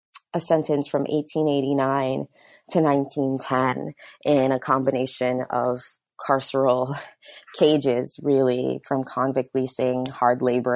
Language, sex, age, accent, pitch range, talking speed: English, female, 20-39, American, 130-155 Hz, 100 wpm